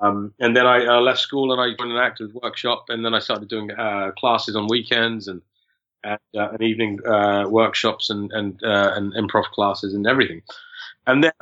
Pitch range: 105-125 Hz